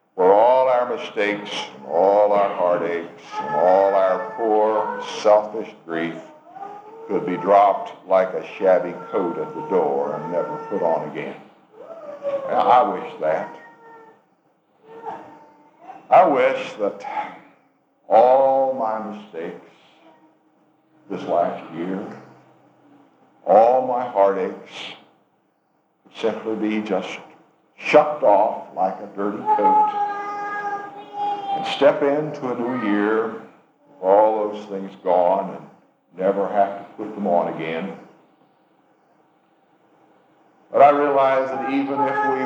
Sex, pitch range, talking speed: male, 105-160 Hz, 110 wpm